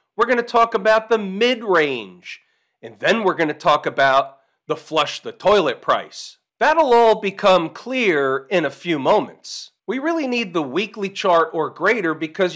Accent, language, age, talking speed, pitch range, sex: American, English, 40-59, 165 wpm, 155-220 Hz, male